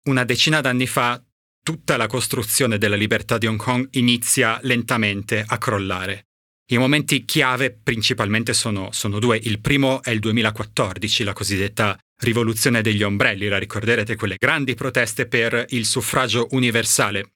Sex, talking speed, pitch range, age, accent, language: male, 145 wpm, 105-130 Hz, 30-49, native, Italian